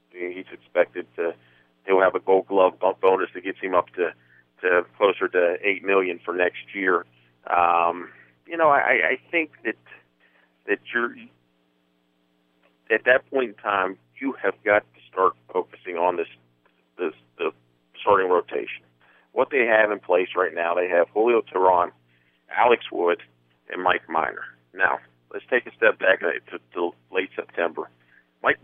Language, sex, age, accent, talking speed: English, male, 50-69, American, 155 wpm